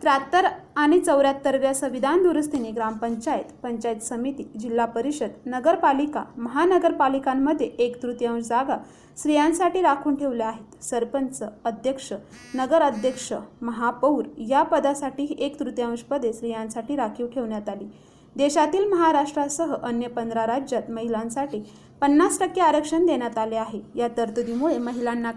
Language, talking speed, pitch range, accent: Marathi, 110 wpm, 235-300 Hz, native